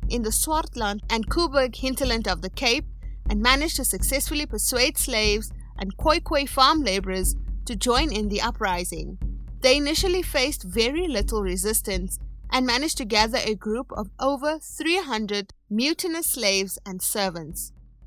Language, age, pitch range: English, 30-49, 205-275 Hz